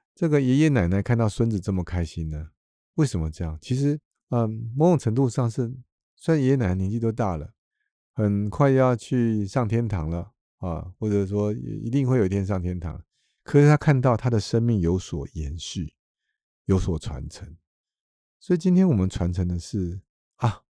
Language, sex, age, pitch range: Chinese, male, 50-69, 95-135 Hz